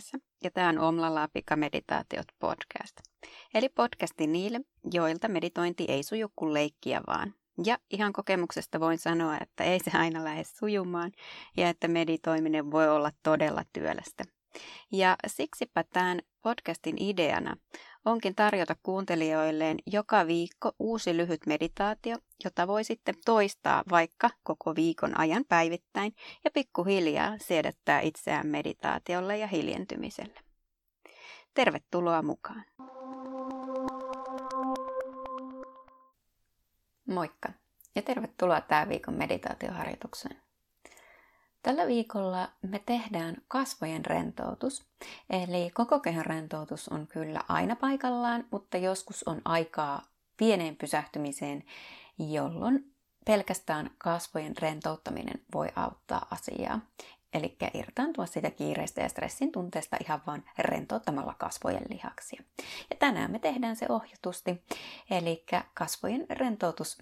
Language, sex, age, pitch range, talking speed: Finnish, female, 30-49, 160-235 Hz, 105 wpm